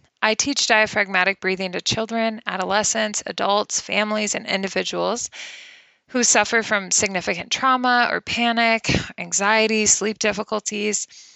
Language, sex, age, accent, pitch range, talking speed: English, female, 20-39, American, 185-235 Hz, 110 wpm